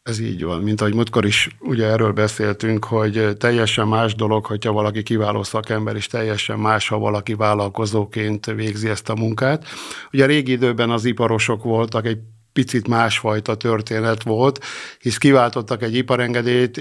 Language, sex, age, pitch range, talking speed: Hungarian, male, 50-69, 110-130 Hz, 150 wpm